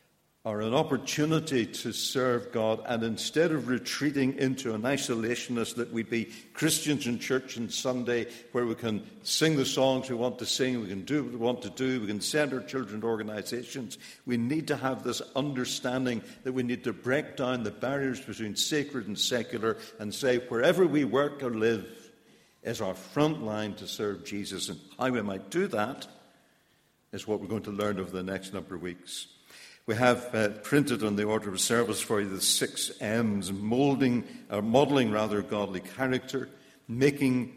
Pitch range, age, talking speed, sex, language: 110-135 Hz, 60-79, 185 wpm, male, English